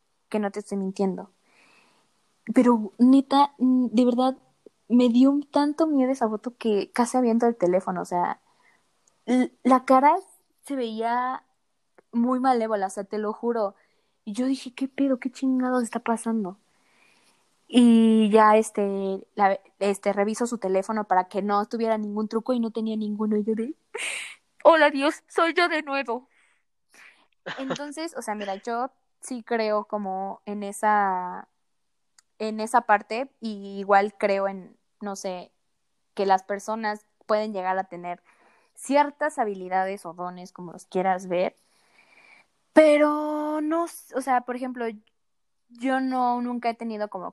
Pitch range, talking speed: 195-250 Hz, 145 wpm